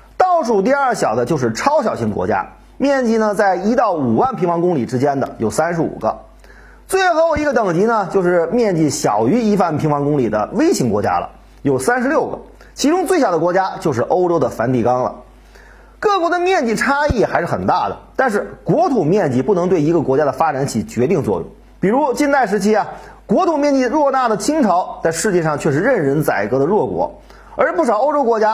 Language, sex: Chinese, male